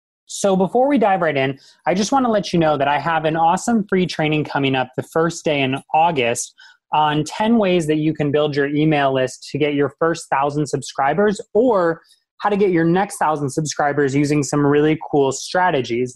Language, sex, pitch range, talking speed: English, male, 140-185 Hz, 210 wpm